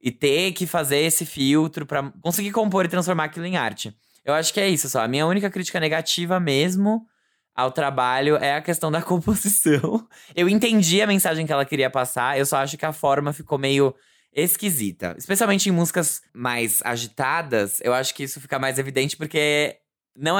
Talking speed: 190 wpm